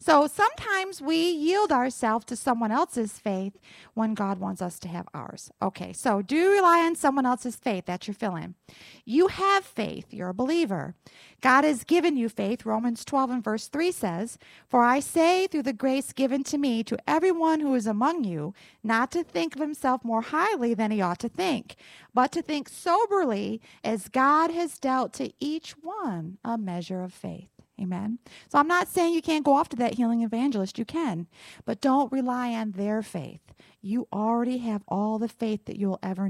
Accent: American